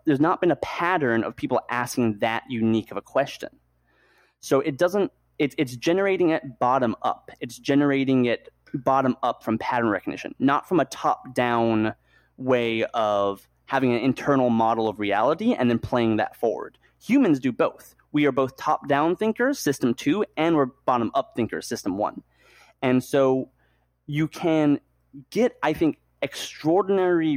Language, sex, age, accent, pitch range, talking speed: English, male, 30-49, American, 115-145 Hz, 150 wpm